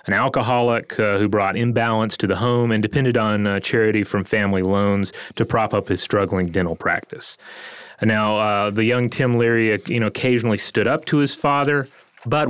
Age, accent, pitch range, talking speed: 30-49, American, 105-130 Hz, 180 wpm